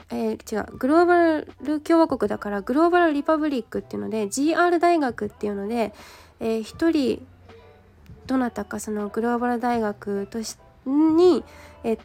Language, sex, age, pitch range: Japanese, female, 20-39, 205-250 Hz